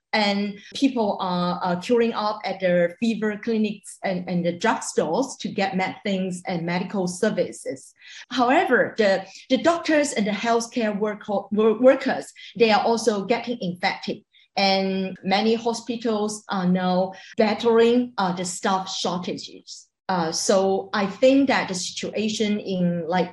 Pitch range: 185-230 Hz